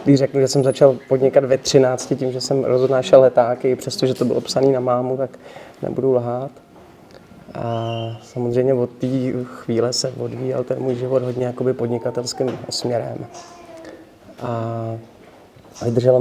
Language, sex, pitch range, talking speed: Czech, male, 120-130 Hz, 135 wpm